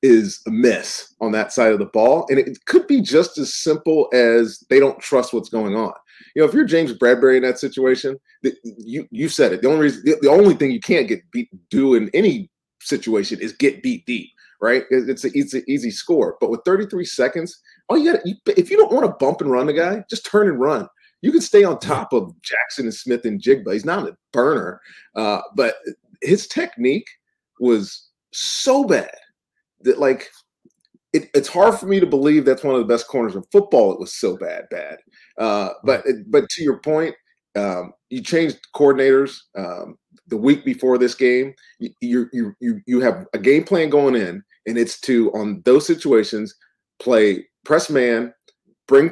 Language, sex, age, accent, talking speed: English, male, 30-49, American, 200 wpm